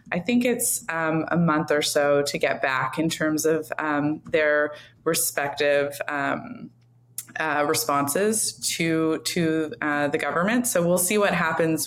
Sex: female